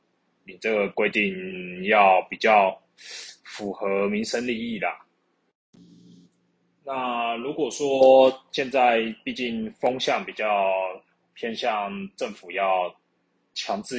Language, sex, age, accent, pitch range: Chinese, male, 20-39, native, 100-125 Hz